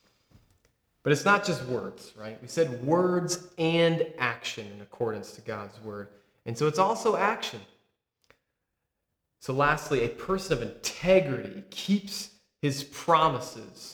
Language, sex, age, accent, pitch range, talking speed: English, male, 30-49, American, 125-160 Hz, 130 wpm